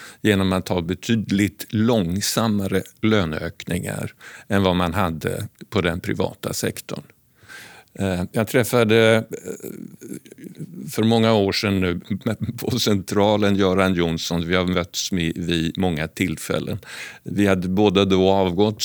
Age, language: 50-69, Swedish